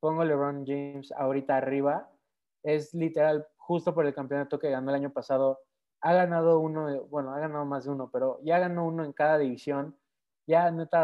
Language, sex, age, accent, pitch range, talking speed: Spanish, male, 20-39, Mexican, 135-160 Hz, 185 wpm